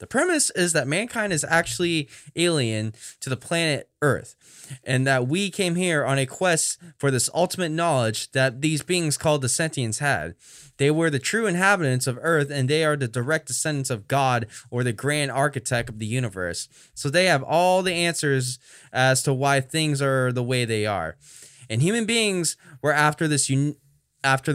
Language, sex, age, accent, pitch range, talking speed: English, male, 10-29, American, 130-170 Hz, 180 wpm